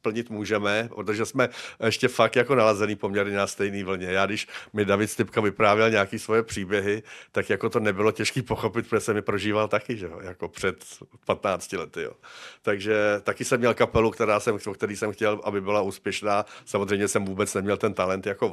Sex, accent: male, native